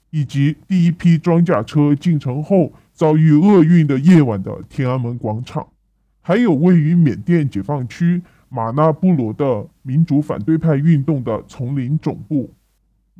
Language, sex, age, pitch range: Chinese, female, 20-39, 135-170 Hz